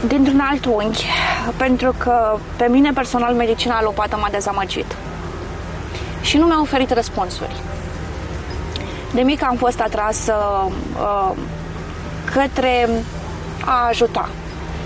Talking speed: 105 wpm